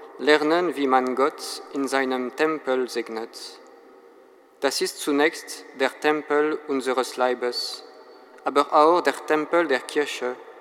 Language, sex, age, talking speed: German, male, 40-59, 120 wpm